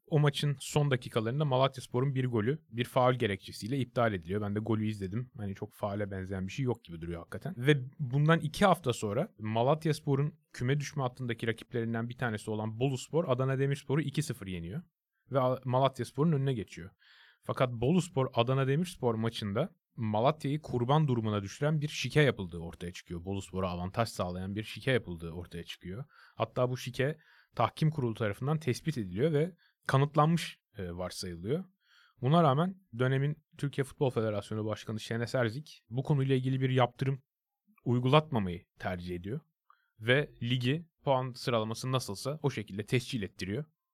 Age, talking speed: 30-49, 145 wpm